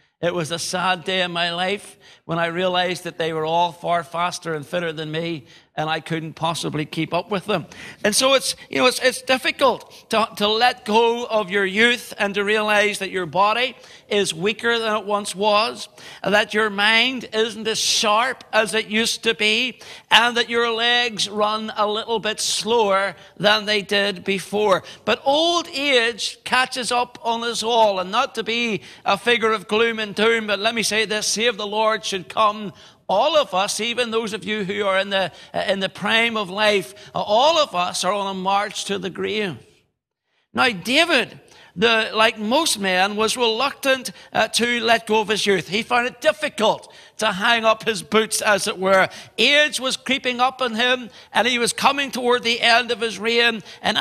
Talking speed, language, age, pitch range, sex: 200 wpm, English, 60-79, 195-235 Hz, male